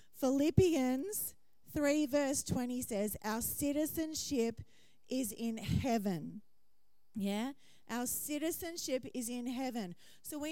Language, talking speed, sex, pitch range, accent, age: English, 105 wpm, female, 220-295 Hz, Australian, 30-49